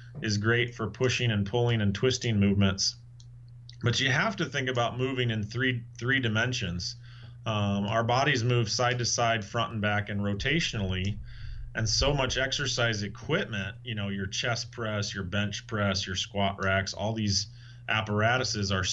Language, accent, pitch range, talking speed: English, American, 105-120 Hz, 165 wpm